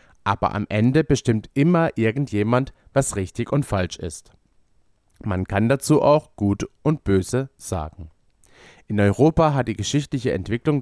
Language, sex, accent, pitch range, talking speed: German, male, German, 95-140 Hz, 140 wpm